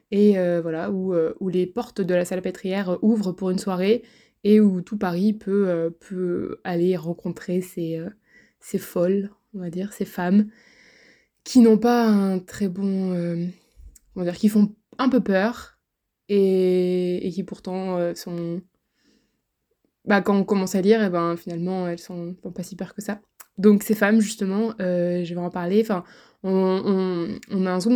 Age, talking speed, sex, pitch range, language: 20-39, 185 wpm, female, 180-210 Hz, French